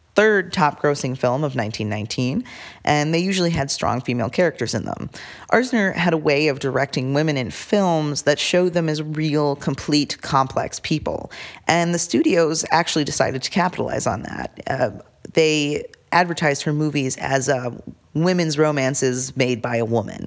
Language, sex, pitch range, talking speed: English, female, 130-175 Hz, 155 wpm